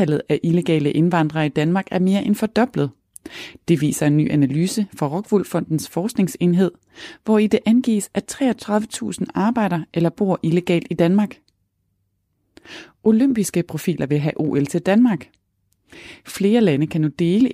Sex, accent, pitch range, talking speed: female, native, 150-215 Hz, 145 wpm